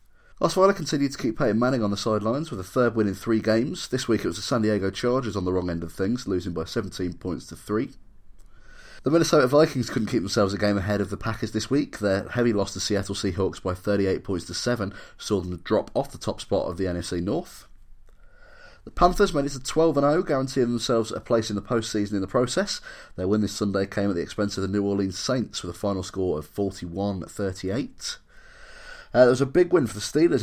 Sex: male